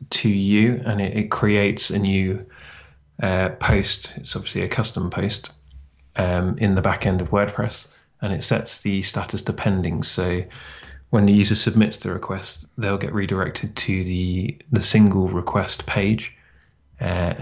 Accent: British